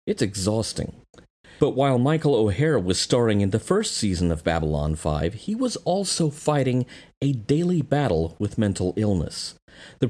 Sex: male